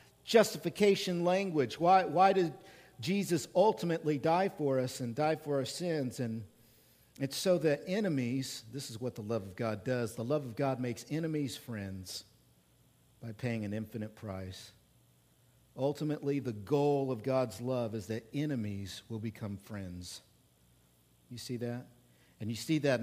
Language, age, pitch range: English, 50-69, 110-145 Hz